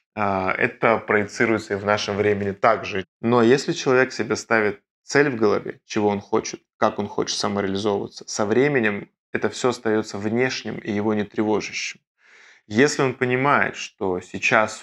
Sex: male